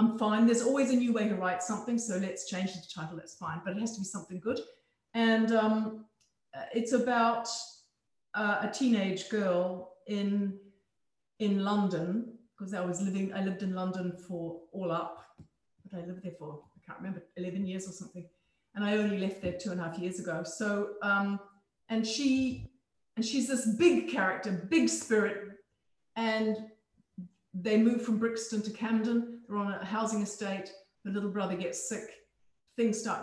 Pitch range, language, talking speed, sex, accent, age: 185-230 Hz, English, 180 wpm, female, British, 40-59